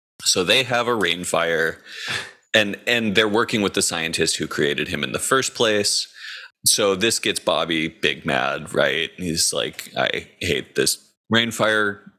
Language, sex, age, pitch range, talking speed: English, male, 30-49, 80-105 Hz, 160 wpm